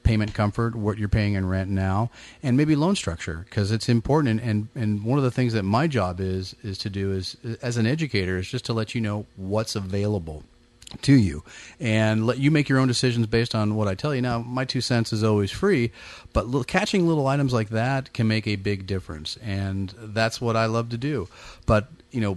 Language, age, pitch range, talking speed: English, 30-49, 100-120 Hz, 230 wpm